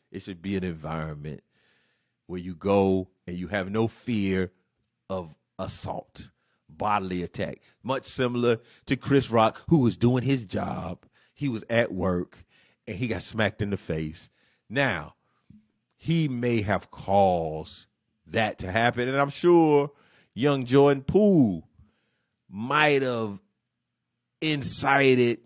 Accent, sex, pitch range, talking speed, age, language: American, male, 95-150 Hz, 130 wpm, 30-49, English